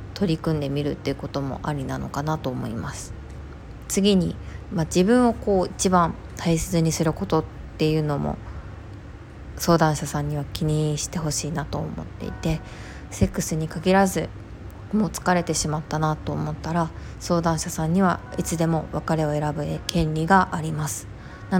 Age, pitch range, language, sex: 20-39, 140-170 Hz, Japanese, female